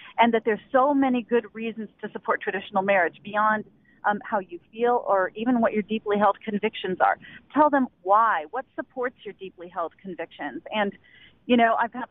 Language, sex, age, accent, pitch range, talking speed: English, female, 30-49, American, 210-265 Hz, 190 wpm